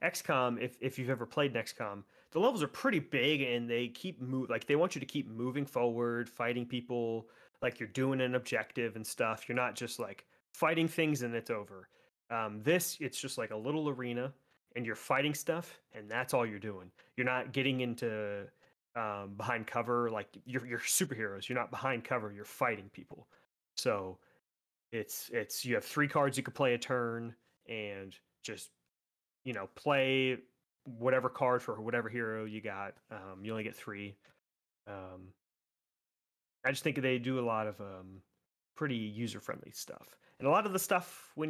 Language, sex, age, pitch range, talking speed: English, male, 30-49, 105-130 Hz, 185 wpm